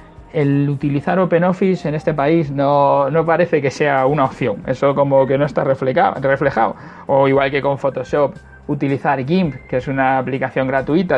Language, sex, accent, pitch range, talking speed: Spanish, male, Spanish, 130-160 Hz, 165 wpm